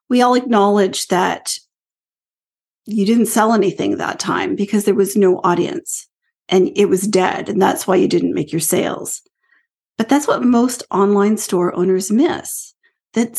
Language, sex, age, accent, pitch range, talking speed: English, female, 40-59, American, 190-270 Hz, 160 wpm